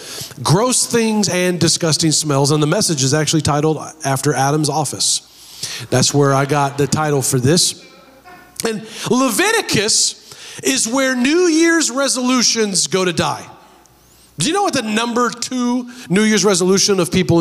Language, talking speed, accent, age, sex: English, 150 wpm, American, 40-59, male